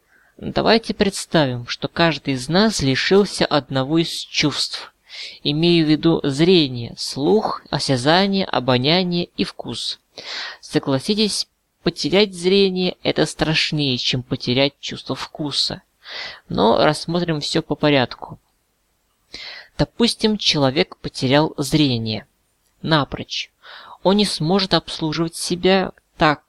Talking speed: 100 wpm